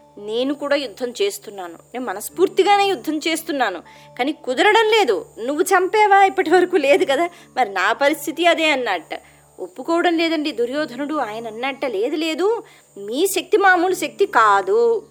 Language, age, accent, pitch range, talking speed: Telugu, 20-39, native, 230-370 Hz, 135 wpm